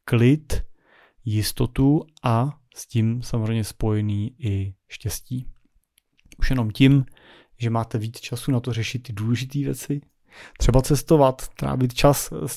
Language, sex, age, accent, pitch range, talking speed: Czech, male, 30-49, native, 110-130 Hz, 130 wpm